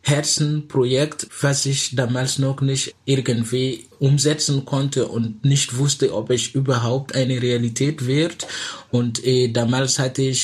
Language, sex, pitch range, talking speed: German, male, 115-130 Hz, 125 wpm